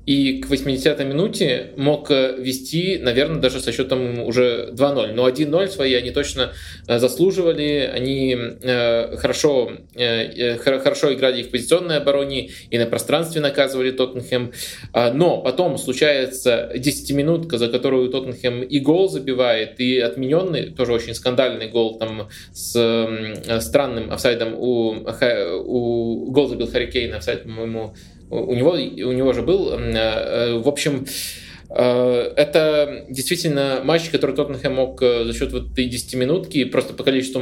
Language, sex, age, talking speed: Russian, male, 20-39, 130 wpm